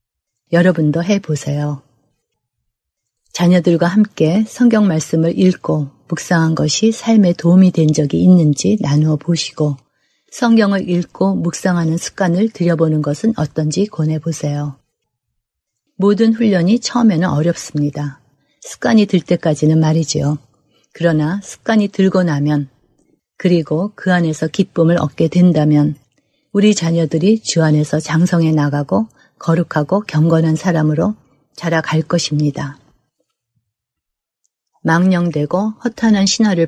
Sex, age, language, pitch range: female, 30-49, Korean, 150-185 Hz